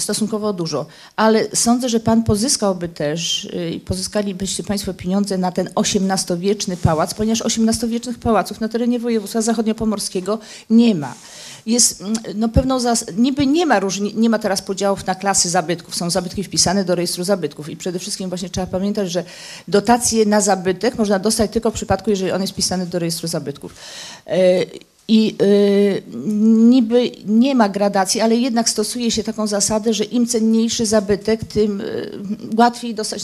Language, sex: Polish, female